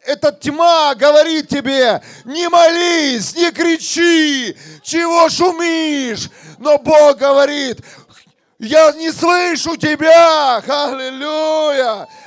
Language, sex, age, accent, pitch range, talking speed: Russian, male, 40-59, native, 260-305 Hz, 90 wpm